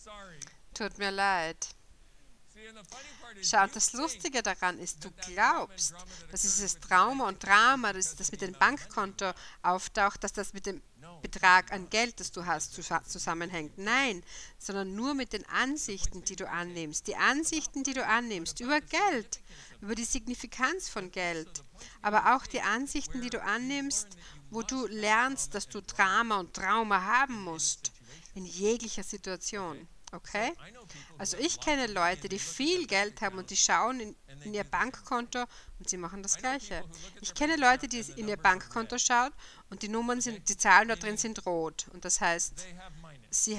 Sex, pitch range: female, 180-230 Hz